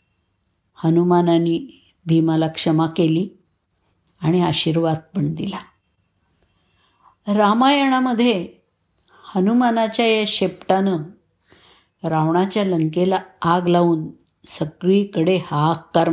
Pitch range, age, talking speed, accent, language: 155-205 Hz, 50-69, 70 wpm, native, Marathi